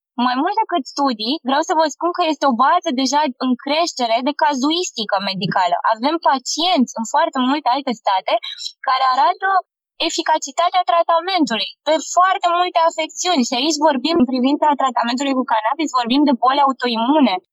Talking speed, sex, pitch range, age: 155 wpm, female, 240-315 Hz, 20-39